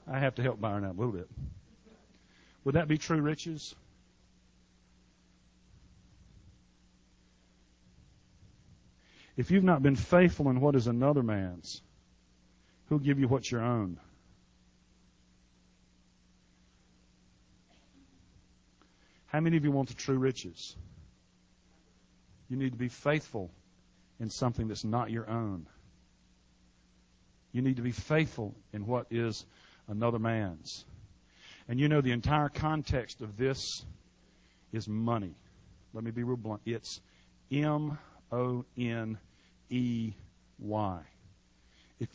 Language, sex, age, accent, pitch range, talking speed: English, male, 50-69, American, 80-130 Hz, 110 wpm